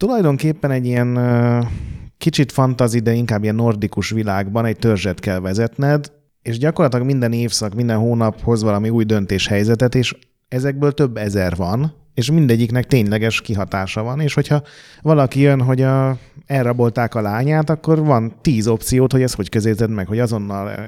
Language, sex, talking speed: Hungarian, male, 155 wpm